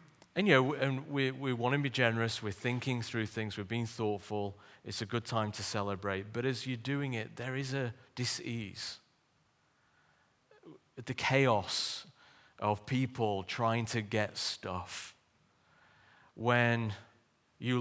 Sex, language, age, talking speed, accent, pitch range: male, English, 30-49, 140 wpm, British, 105-120 Hz